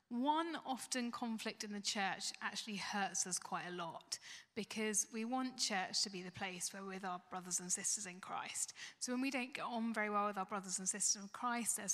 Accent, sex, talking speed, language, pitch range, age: British, female, 225 wpm, English, 200-245 Hz, 10-29